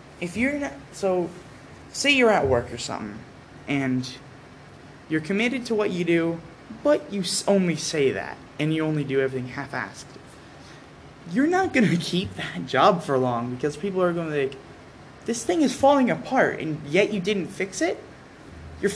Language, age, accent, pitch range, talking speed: English, 20-39, American, 140-210 Hz, 170 wpm